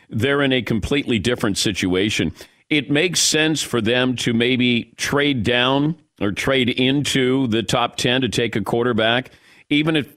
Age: 50-69